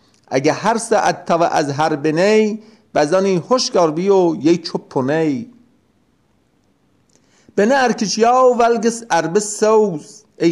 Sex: male